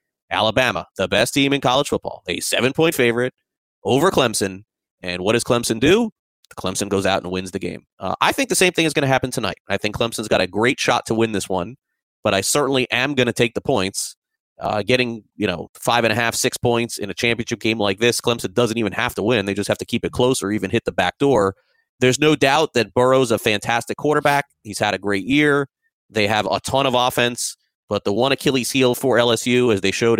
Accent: American